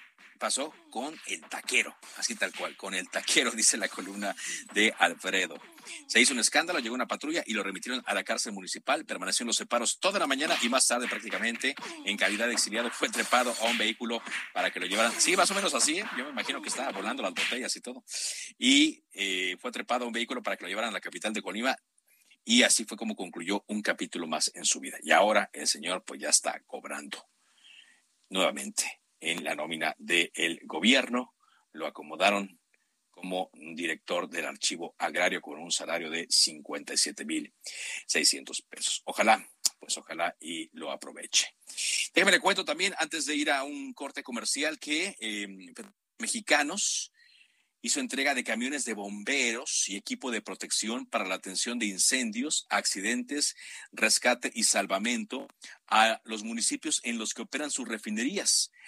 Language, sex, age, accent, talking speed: Spanish, male, 50-69, Mexican, 175 wpm